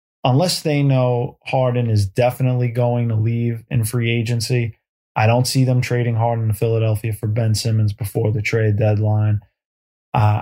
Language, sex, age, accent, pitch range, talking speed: English, male, 20-39, American, 110-125 Hz, 160 wpm